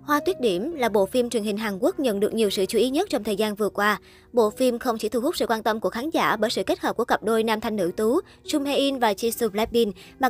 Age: 20-39